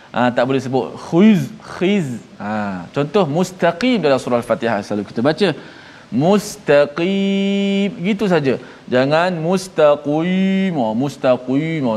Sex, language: male, Malayalam